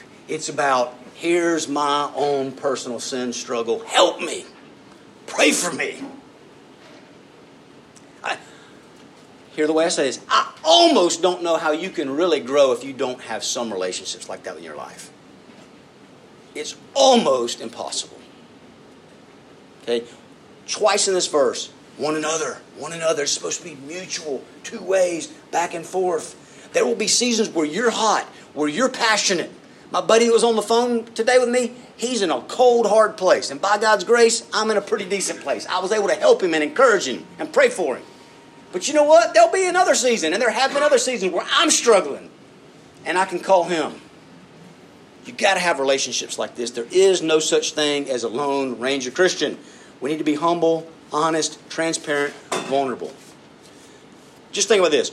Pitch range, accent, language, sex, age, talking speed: 150-230 Hz, American, English, male, 50-69, 175 wpm